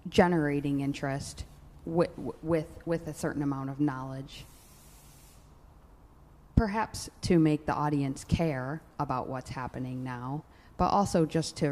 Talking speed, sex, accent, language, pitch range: 125 wpm, female, American, English, 125-145 Hz